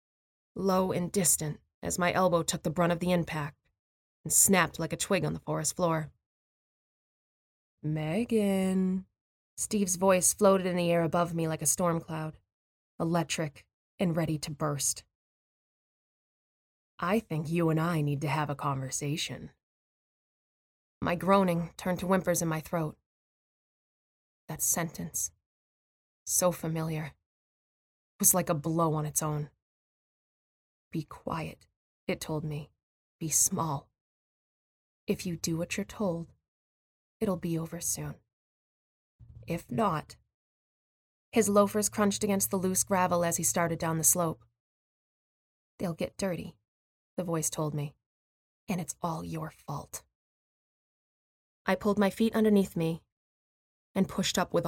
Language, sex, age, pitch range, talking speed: English, female, 20-39, 130-180 Hz, 135 wpm